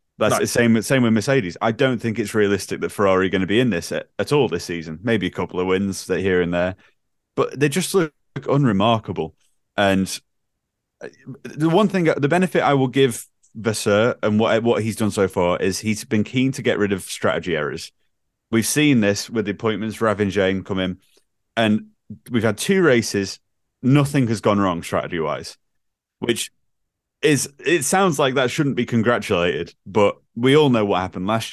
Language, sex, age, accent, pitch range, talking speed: English, male, 30-49, British, 95-120 Hz, 185 wpm